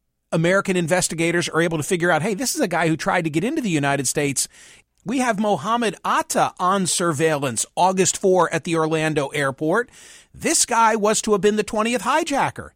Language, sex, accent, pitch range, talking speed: English, male, American, 165-215 Hz, 195 wpm